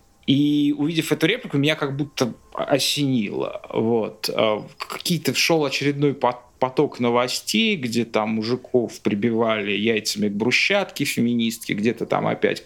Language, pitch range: Russian, 120-150 Hz